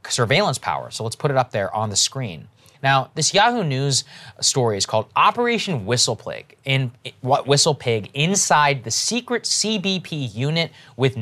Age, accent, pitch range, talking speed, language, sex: 20-39, American, 115-140 Hz, 155 wpm, English, male